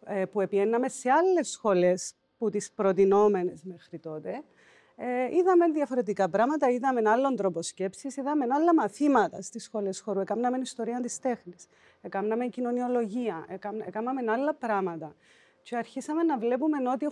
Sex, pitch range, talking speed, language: female, 200-275 Hz, 135 wpm, Greek